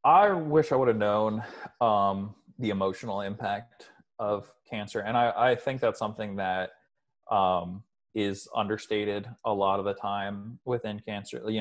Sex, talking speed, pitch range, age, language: male, 155 wpm, 100-115 Hz, 20-39, English